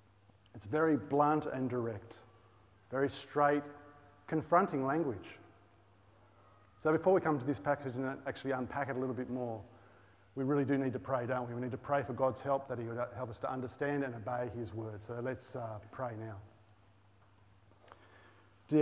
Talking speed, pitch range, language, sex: 180 wpm, 105-140 Hz, English, male